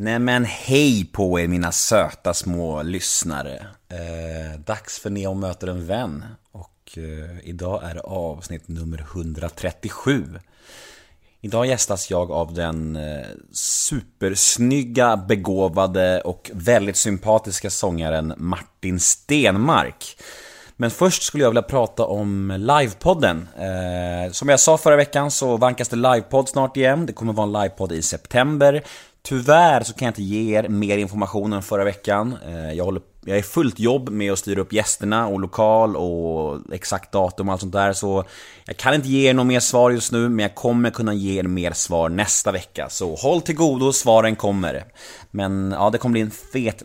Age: 30-49